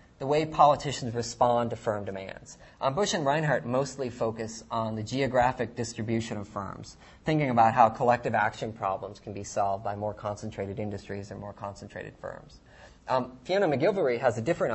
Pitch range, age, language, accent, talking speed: 110-140 Hz, 30-49, English, American, 170 wpm